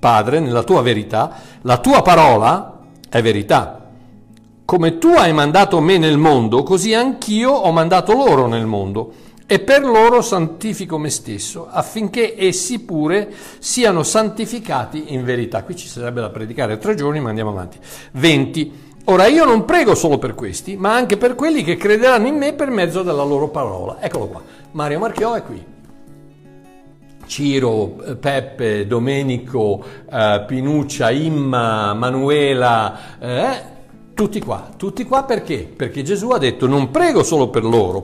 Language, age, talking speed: Italian, 60-79, 150 wpm